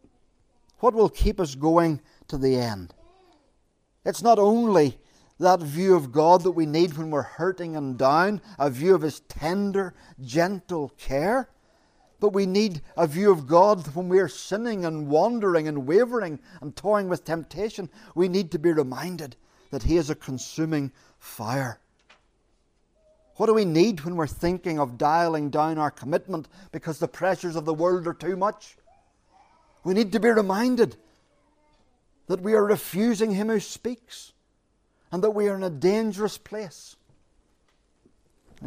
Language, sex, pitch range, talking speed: English, male, 140-195 Hz, 160 wpm